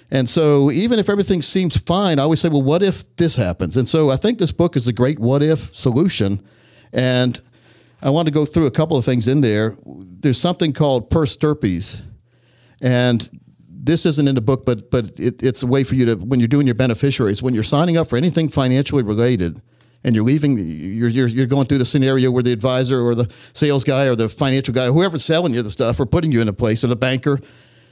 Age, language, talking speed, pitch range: 50-69, English, 230 wpm, 120-160 Hz